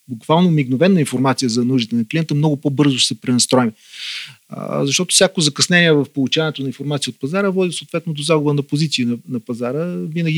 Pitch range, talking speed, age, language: 135-155 Hz, 180 wpm, 30-49, Bulgarian